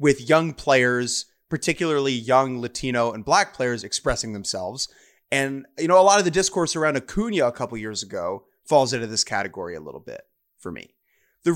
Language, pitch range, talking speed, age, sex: English, 125-165 Hz, 180 wpm, 30-49, male